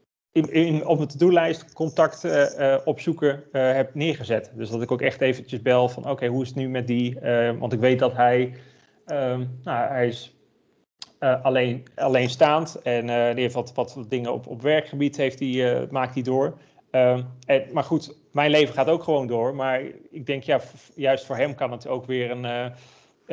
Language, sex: Dutch, male